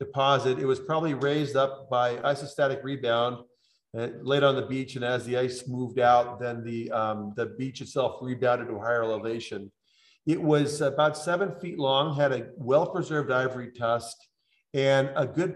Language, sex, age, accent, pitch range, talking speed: English, male, 40-59, American, 120-145 Hz, 175 wpm